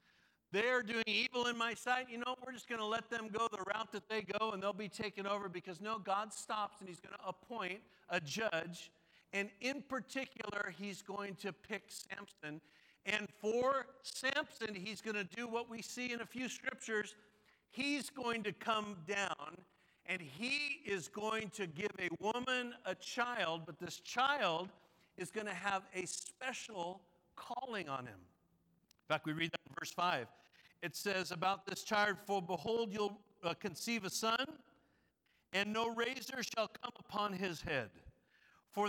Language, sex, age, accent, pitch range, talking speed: English, male, 50-69, American, 185-230 Hz, 175 wpm